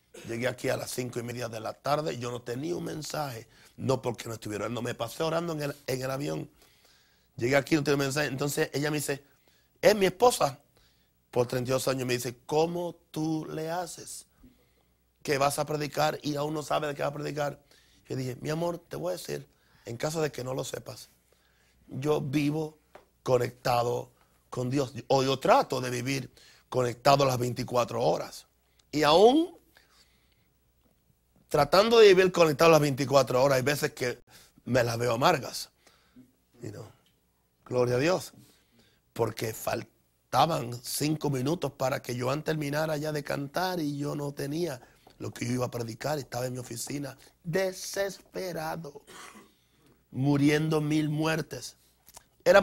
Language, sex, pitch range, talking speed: Spanish, male, 120-155 Hz, 165 wpm